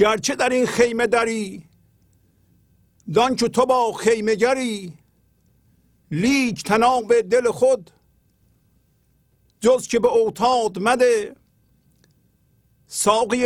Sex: male